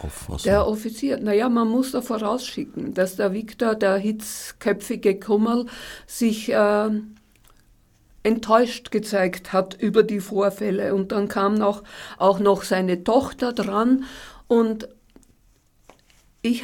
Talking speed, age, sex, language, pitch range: 120 wpm, 50-69, female, German, 205-235 Hz